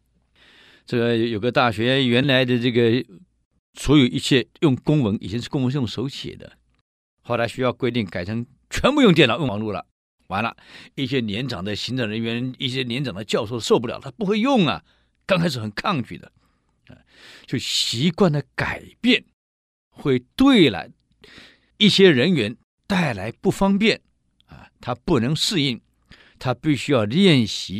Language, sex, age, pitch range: Chinese, male, 60-79, 105-155 Hz